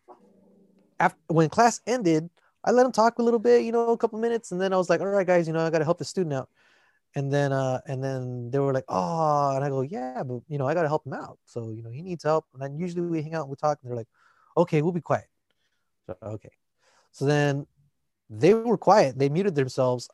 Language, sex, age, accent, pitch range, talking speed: English, male, 30-49, American, 140-190 Hz, 245 wpm